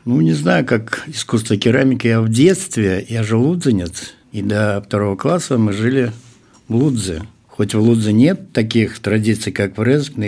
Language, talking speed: Russian, 170 wpm